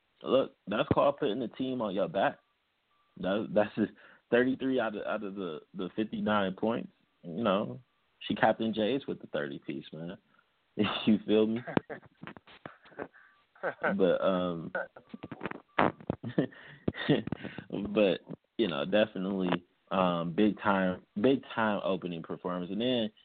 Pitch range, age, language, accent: 85-105 Hz, 20-39, English, American